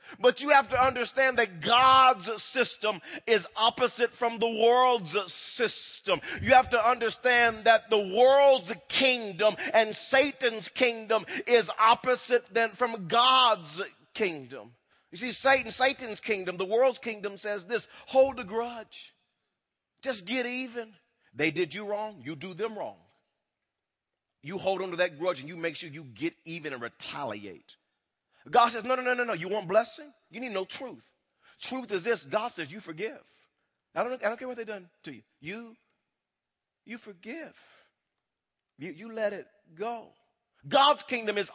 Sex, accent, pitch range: male, American, 205-255 Hz